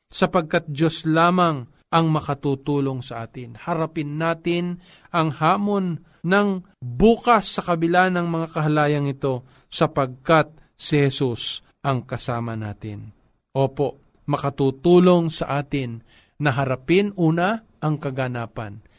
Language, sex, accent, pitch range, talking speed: Filipino, male, native, 140-180 Hz, 105 wpm